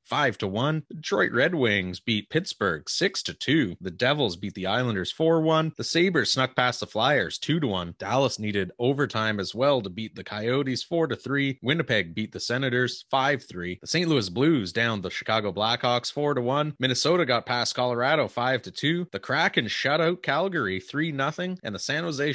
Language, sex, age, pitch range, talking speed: English, male, 30-49, 110-145 Hz, 160 wpm